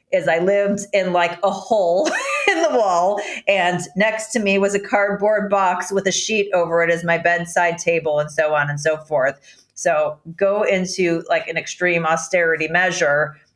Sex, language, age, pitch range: female, English, 40-59, 155-190 Hz